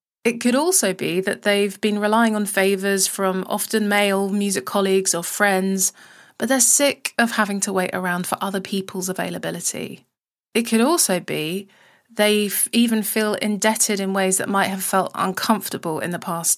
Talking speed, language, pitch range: 170 wpm, English, 190-225 Hz